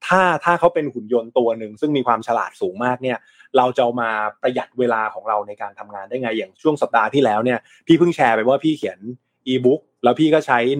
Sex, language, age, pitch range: male, Thai, 20-39, 115-145 Hz